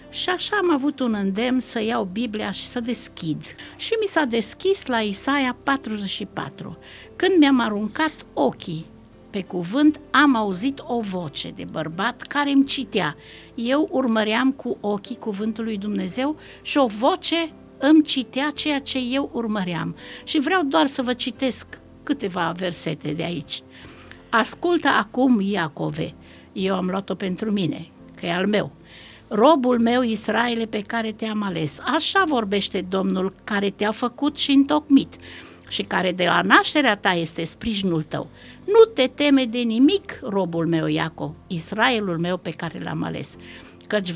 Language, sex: Romanian, female